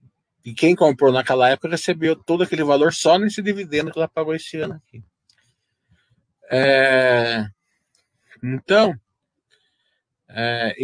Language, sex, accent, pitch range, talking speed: Portuguese, male, Brazilian, 125-170 Hz, 115 wpm